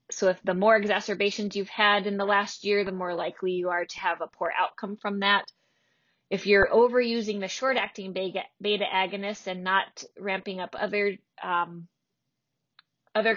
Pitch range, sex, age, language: 190-225 Hz, female, 20-39, English